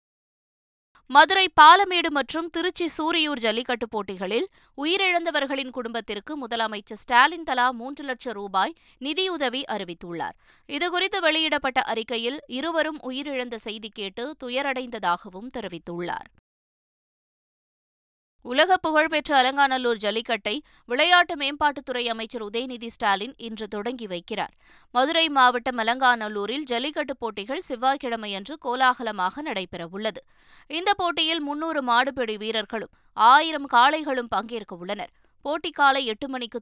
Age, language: 20-39, Tamil